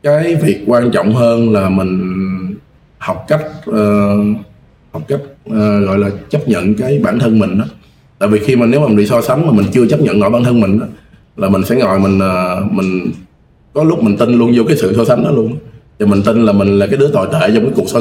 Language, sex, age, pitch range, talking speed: Vietnamese, male, 20-39, 95-125 Hz, 250 wpm